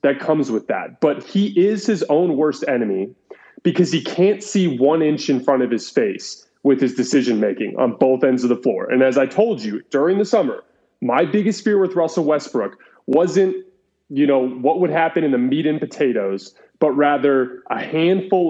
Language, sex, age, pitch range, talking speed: English, male, 30-49, 140-200 Hz, 195 wpm